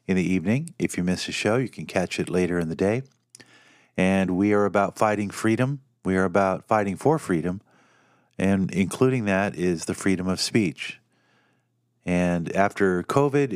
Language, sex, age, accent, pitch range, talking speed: English, male, 50-69, American, 95-105 Hz, 175 wpm